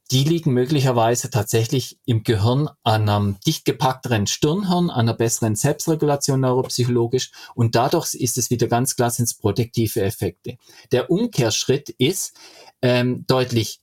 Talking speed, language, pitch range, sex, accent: 135 wpm, German, 120-150 Hz, male, German